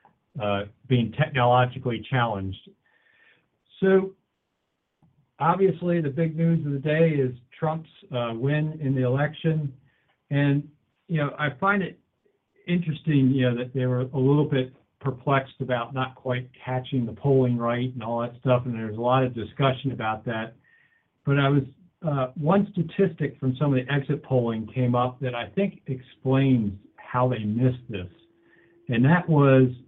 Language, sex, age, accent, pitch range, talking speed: English, male, 50-69, American, 120-160 Hz, 160 wpm